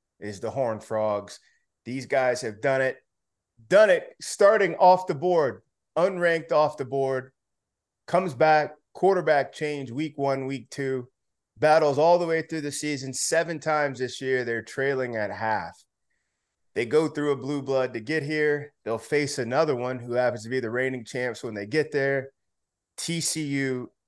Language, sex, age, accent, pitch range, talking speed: English, male, 30-49, American, 125-155 Hz, 165 wpm